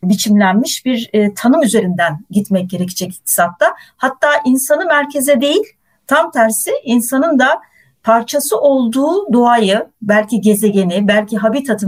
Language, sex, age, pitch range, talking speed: Turkish, female, 40-59, 200-260 Hz, 115 wpm